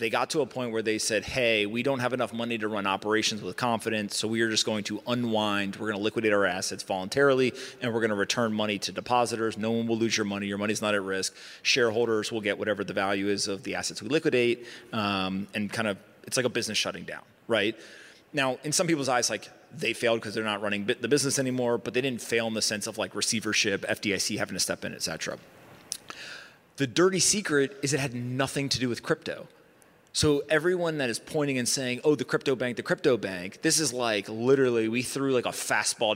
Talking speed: 235 wpm